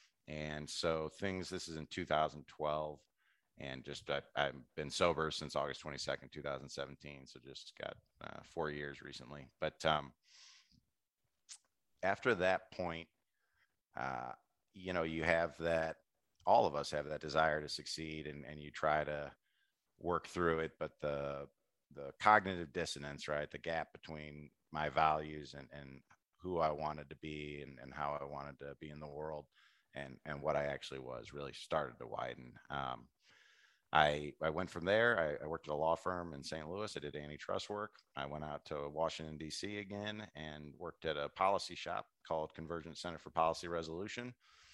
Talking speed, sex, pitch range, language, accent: 170 wpm, male, 75-80 Hz, English, American